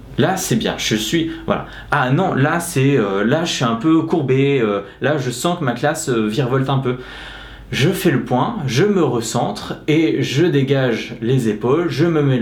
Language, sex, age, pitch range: English, male, 20-39, 115-155 Hz